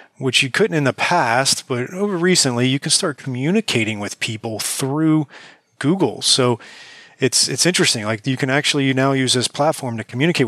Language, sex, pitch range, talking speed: English, male, 110-135 Hz, 185 wpm